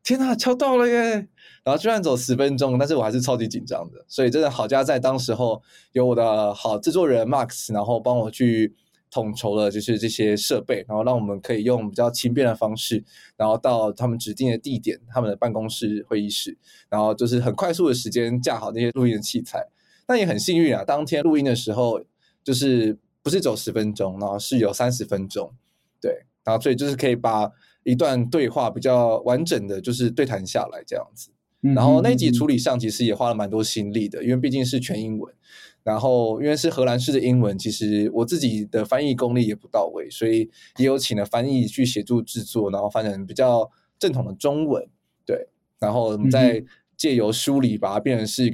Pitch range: 110-130 Hz